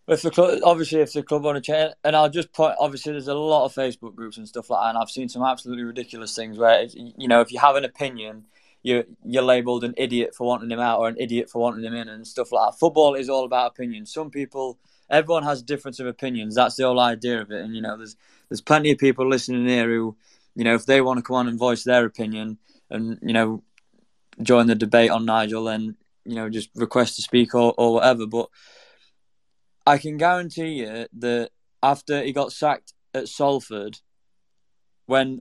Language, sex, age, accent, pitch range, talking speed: English, male, 20-39, British, 115-140 Hz, 225 wpm